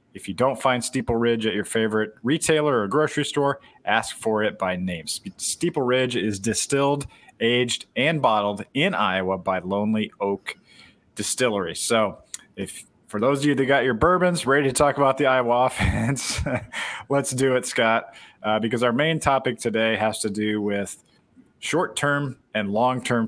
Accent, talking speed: American, 170 wpm